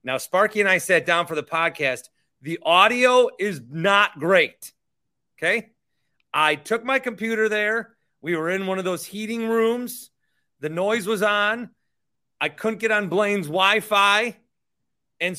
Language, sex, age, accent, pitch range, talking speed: English, male, 30-49, American, 145-210 Hz, 150 wpm